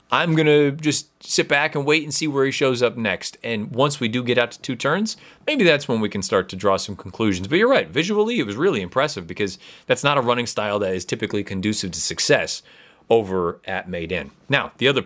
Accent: American